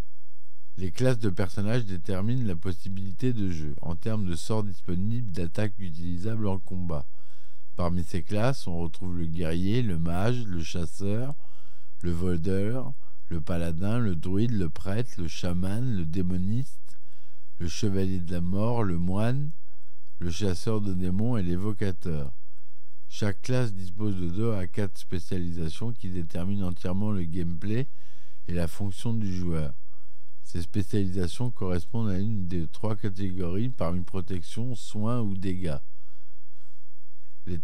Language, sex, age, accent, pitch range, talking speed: French, male, 50-69, French, 85-110 Hz, 140 wpm